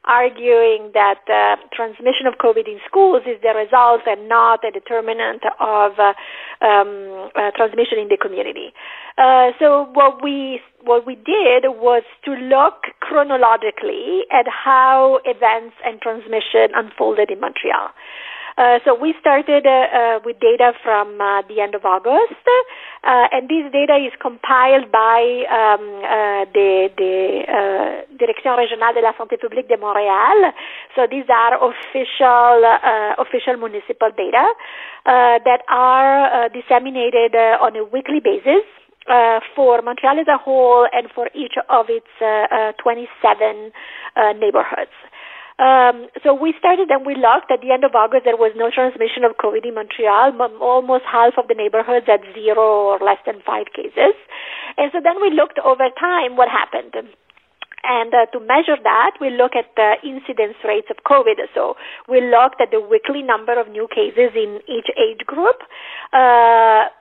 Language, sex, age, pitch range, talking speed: English, female, 50-69, 225-280 Hz, 160 wpm